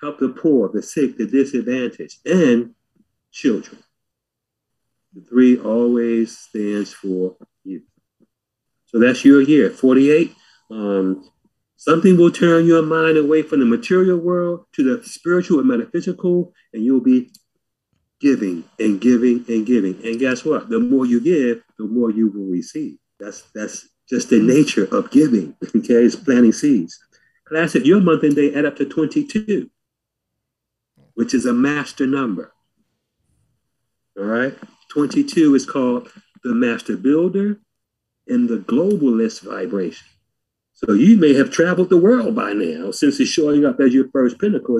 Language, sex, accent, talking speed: English, male, American, 145 wpm